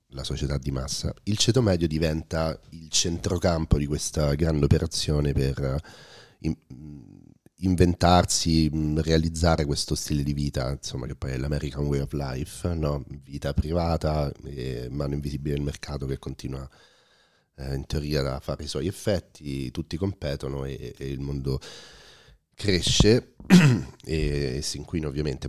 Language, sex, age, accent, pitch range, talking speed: Italian, male, 40-59, native, 70-85 Hz, 140 wpm